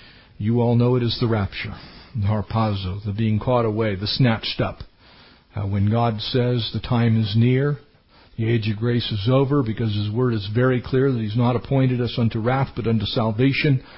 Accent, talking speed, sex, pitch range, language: American, 200 wpm, male, 115-140 Hz, English